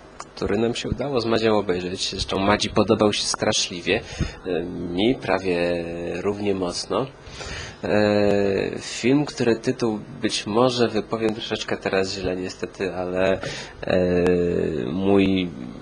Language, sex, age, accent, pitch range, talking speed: Polish, male, 20-39, native, 90-110 Hz, 120 wpm